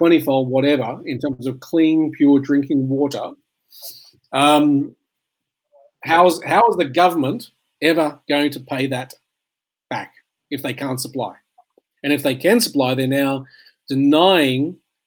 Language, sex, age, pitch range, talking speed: English, male, 40-59, 135-175 Hz, 130 wpm